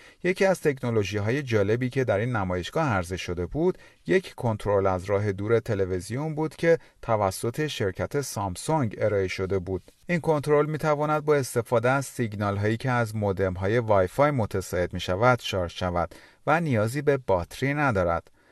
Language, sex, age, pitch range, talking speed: Persian, male, 40-59, 95-140 Hz, 150 wpm